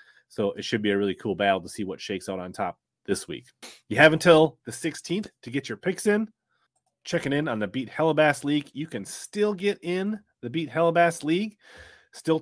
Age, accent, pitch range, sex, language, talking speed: 30-49, American, 115-160 Hz, male, English, 215 wpm